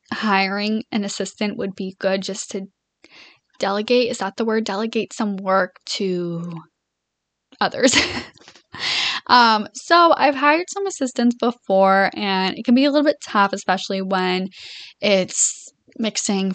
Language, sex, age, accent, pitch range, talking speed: English, female, 10-29, American, 190-235 Hz, 135 wpm